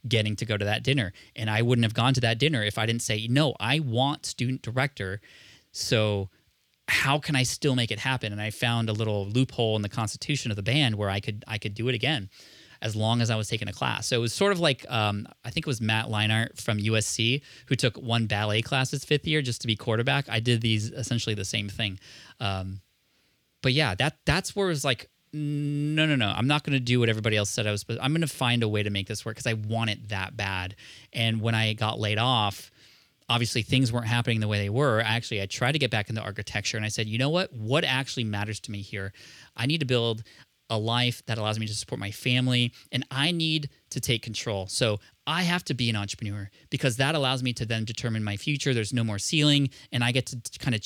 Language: English